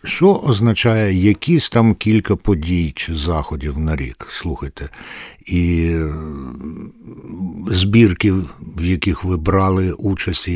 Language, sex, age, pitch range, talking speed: Ukrainian, male, 60-79, 80-100 Hz, 100 wpm